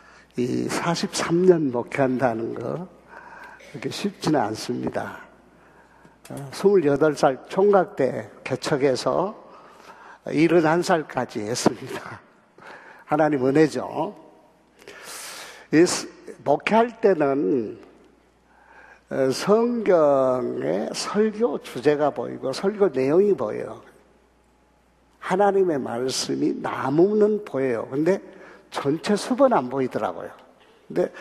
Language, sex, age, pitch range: Korean, male, 60-79, 140-205 Hz